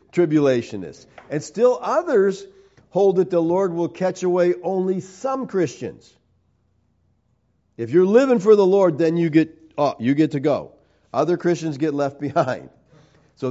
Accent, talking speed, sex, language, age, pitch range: American, 150 wpm, male, English, 50-69, 130-185 Hz